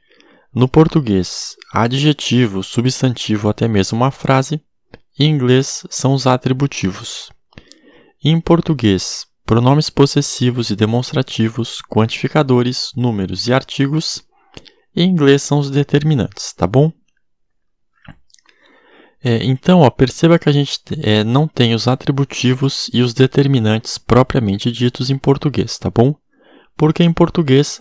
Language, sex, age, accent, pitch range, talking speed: Portuguese, male, 20-39, Brazilian, 115-150 Hz, 110 wpm